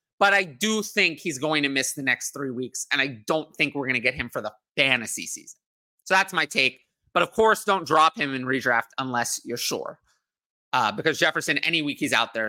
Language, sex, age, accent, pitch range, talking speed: English, male, 30-49, American, 145-205 Hz, 230 wpm